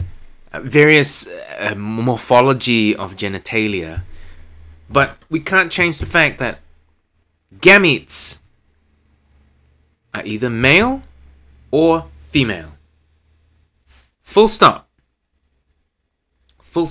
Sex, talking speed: male, 70 wpm